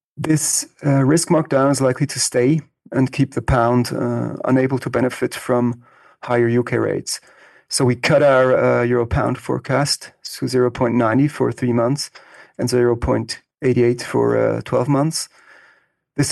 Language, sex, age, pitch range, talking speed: English, male, 40-59, 120-135 Hz, 145 wpm